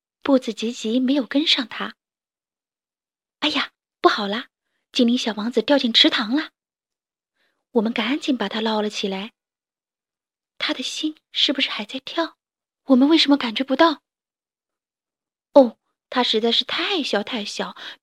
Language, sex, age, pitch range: Chinese, female, 20-39, 225-285 Hz